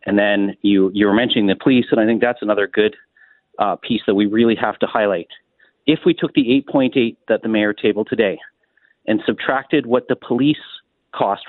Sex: male